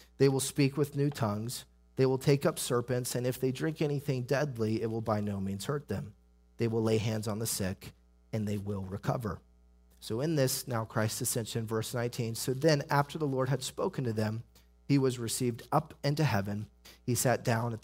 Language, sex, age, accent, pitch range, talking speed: English, male, 30-49, American, 100-130 Hz, 210 wpm